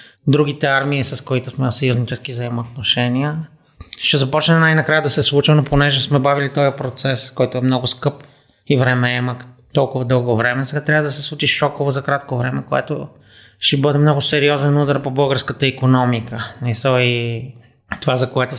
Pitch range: 125-140 Hz